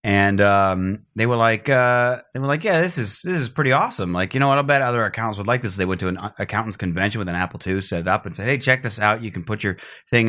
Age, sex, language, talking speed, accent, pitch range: 30-49, male, English, 295 wpm, American, 100-135 Hz